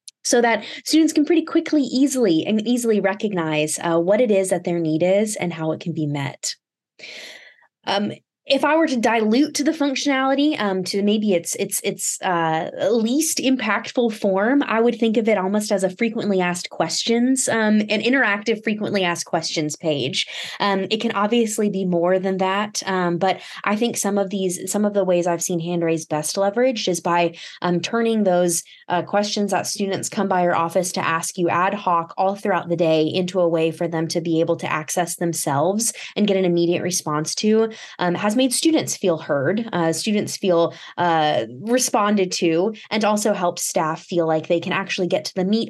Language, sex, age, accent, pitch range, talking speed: English, female, 20-39, American, 170-215 Hz, 195 wpm